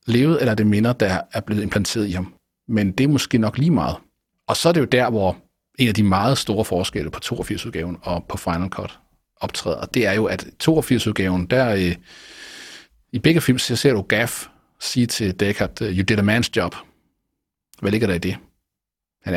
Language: Danish